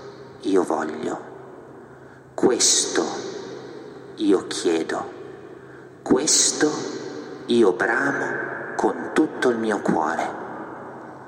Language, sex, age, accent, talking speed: Italian, male, 50-69, native, 70 wpm